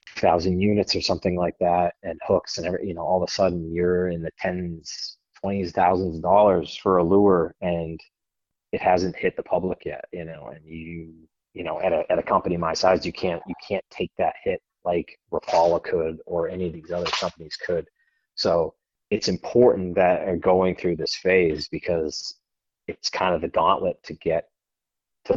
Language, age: English, 30-49